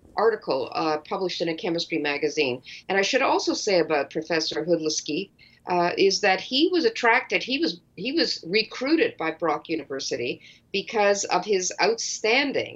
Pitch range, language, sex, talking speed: 160-235 Hz, English, female, 155 wpm